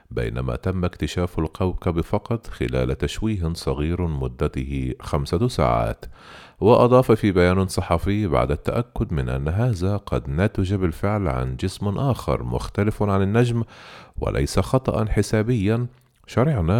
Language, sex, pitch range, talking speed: Arabic, male, 75-110 Hz, 120 wpm